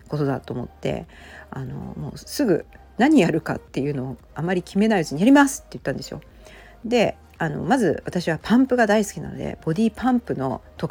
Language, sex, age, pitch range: Japanese, female, 40-59, 135-215 Hz